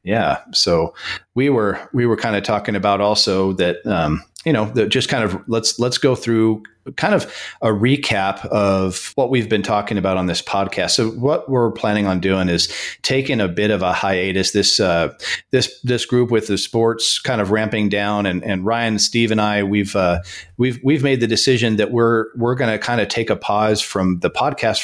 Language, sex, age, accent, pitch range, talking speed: English, male, 40-59, American, 100-120 Hz, 210 wpm